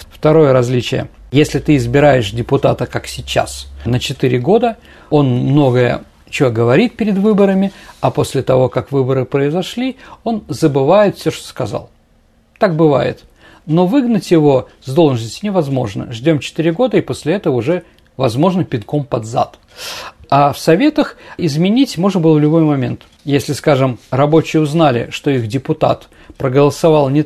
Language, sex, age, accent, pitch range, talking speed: Russian, male, 50-69, native, 130-180 Hz, 140 wpm